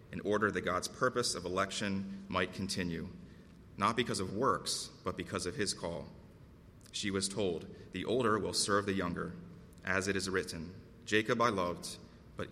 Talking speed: 170 wpm